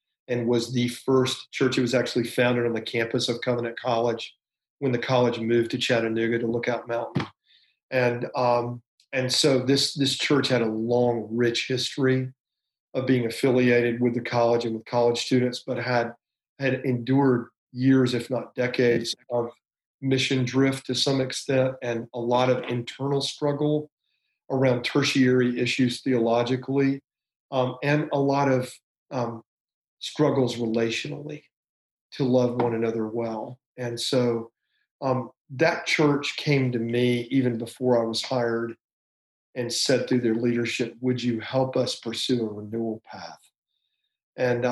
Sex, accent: male, American